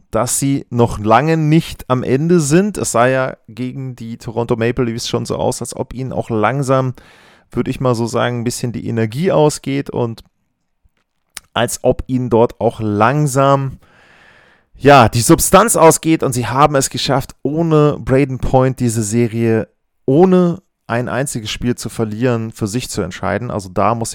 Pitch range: 115-135 Hz